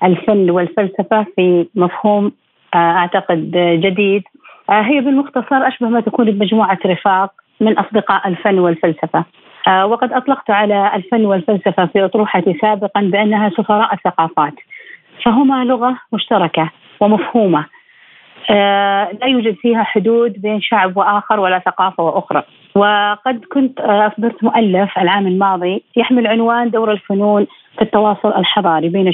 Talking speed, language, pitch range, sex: 115 wpm, Arabic, 190-225 Hz, female